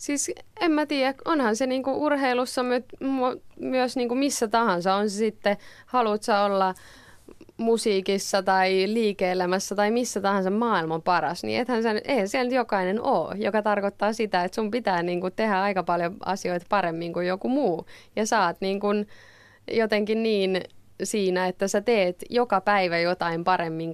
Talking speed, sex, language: 155 wpm, female, Finnish